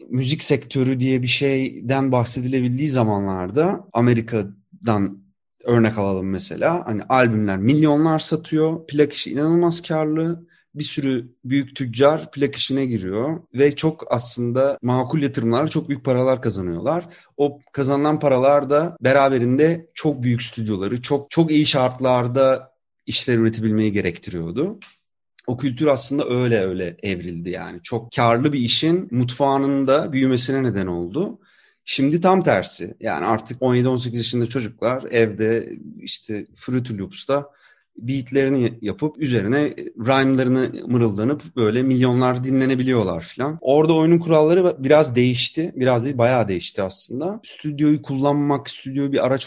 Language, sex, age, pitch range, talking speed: Turkish, male, 30-49, 115-140 Hz, 125 wpm